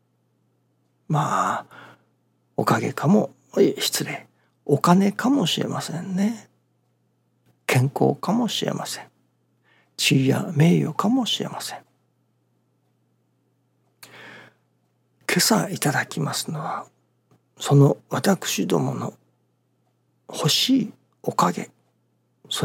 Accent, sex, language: native, male, Japanese